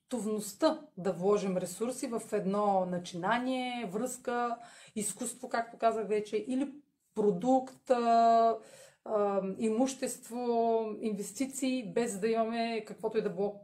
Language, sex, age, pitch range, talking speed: Bulgarian, female, 30-49, 200-260 Hz, 95 wpm